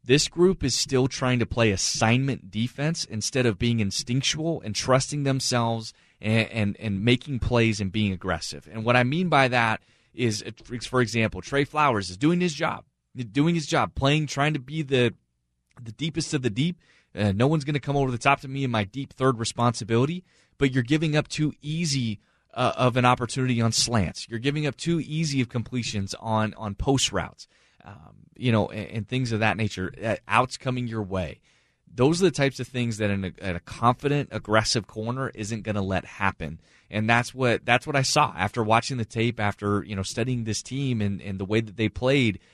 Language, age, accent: English, 30-49, American